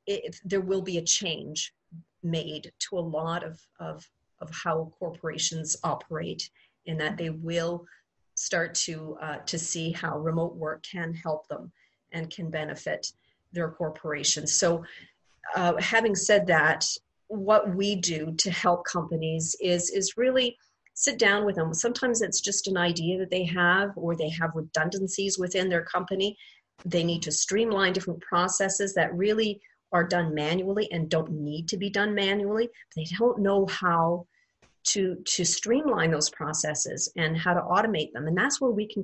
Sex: female